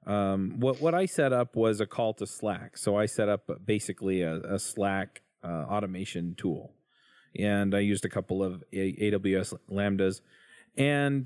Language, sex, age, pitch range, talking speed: English, male, 30-49, 95-110 Hz, 170 wpm